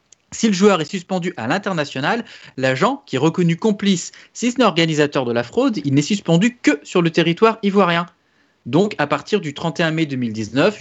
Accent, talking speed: French, 190 wpm